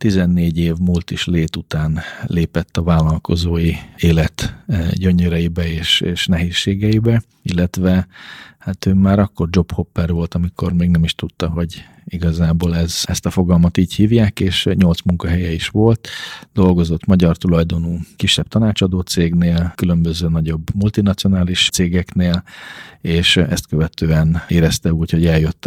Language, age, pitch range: Hungarian, 40-59, 85-95 Hz